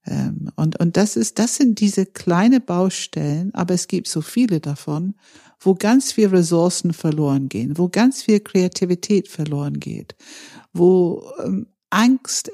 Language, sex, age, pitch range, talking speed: German, female, 60-79, 155-205 Hz, 140 wpm